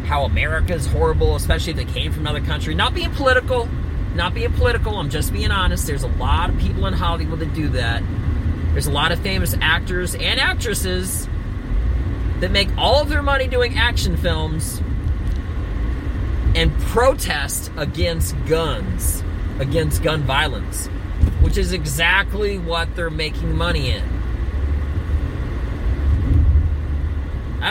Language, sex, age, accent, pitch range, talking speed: English, male, 30-49, American, 80-95 Hz, 140 wpm